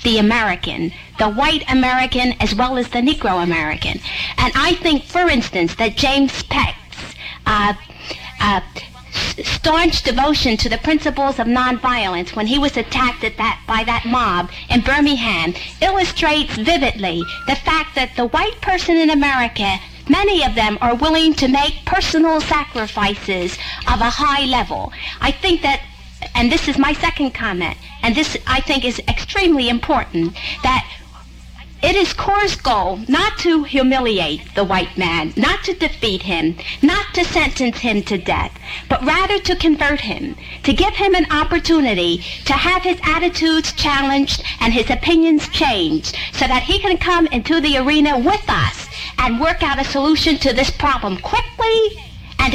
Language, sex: English, female